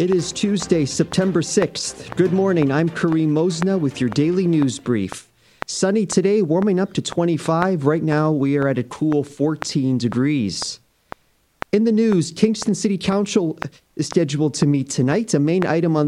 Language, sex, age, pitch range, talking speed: English, male, 30-49, 140-185 Hz, 170 wpm